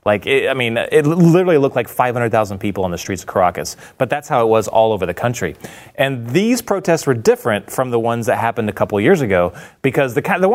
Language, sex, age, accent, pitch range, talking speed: English, male, 30-49, American, 105-135 Hz, 235 wpm